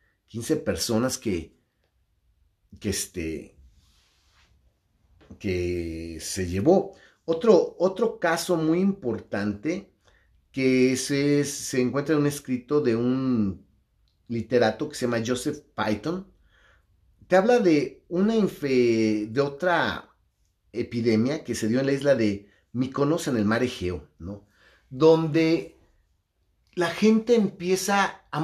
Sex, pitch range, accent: male, 100-165 Hz, Mexican